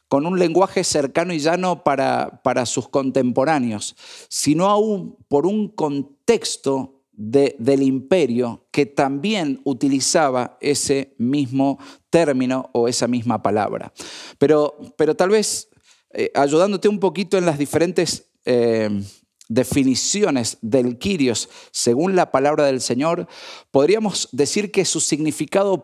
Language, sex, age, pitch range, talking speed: Spanish, male, 50-69, 135-195 Hz, 125 wpm